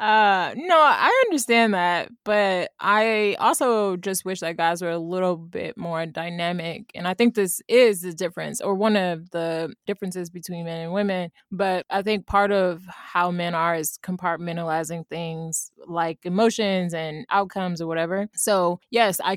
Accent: American